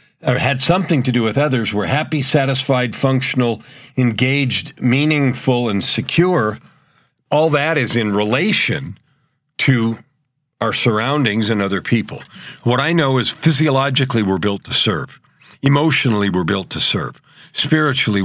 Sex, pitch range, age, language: male, 110-145 Hz, 50-69, English